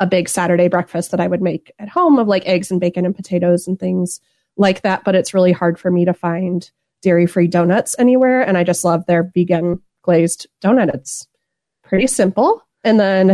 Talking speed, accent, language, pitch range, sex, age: 205 wpm, American, English, 175-200 Hz, female, 30-49